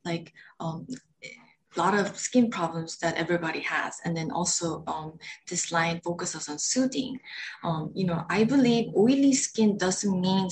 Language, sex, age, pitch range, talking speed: English, female, 20-39, 170-210 Hz, 160 wpm